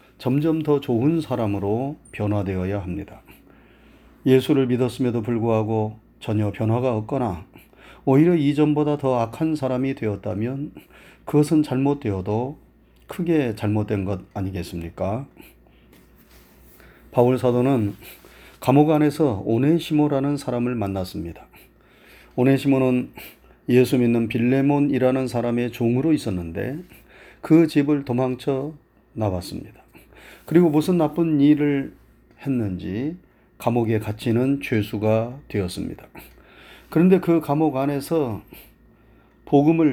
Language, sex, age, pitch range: Korean, male, 30-49, 110-145 Hz